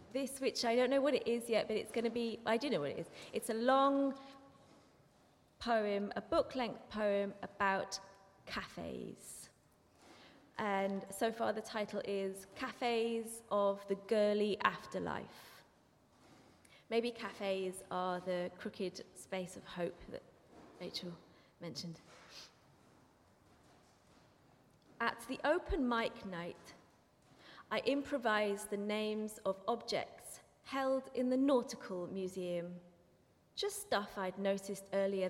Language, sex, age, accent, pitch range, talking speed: English, female, 20-39, British, 195-250 Hz, 120 wpm